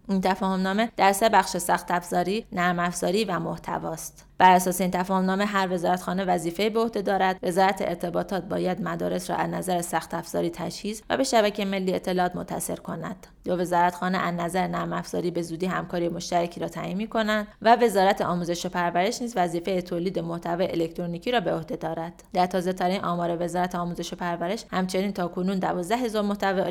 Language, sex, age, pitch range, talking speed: Persian, female, 20-39, 180-205 Hz, 175 wpm